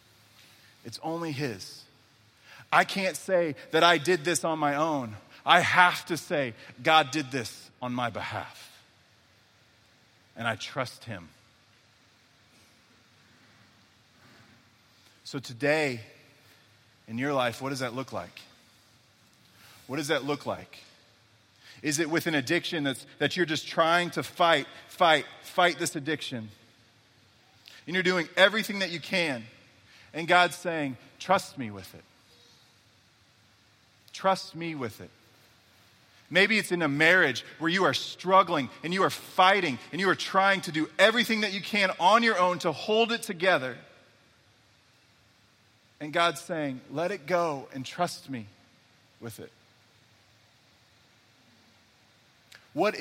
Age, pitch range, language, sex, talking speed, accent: 30-49, 115-170 Hz, English, male, 130 wpm, American